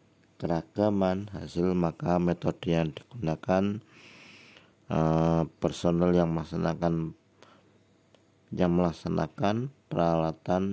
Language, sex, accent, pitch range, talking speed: Indonesian, male, native, 80-95 Hz, 75 wpm